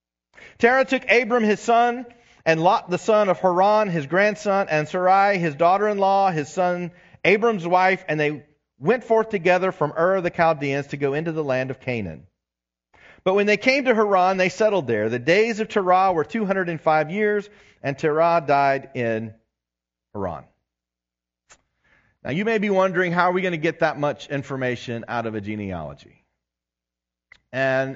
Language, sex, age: English, male, 40-59